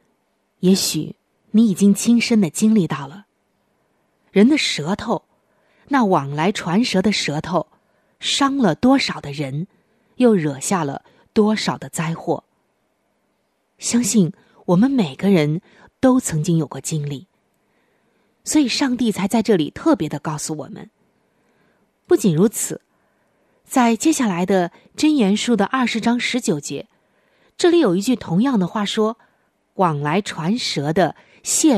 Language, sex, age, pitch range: Chinese, female, 20-39, 160-230 Hz